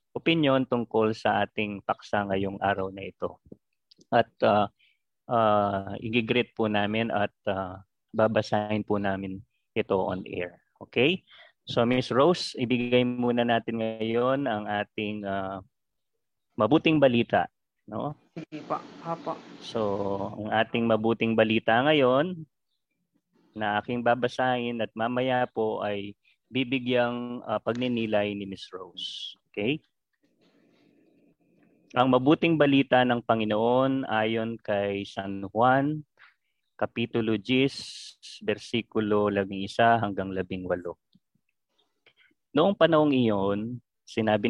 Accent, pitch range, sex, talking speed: native, 105-125 Hz, male, 100 wpm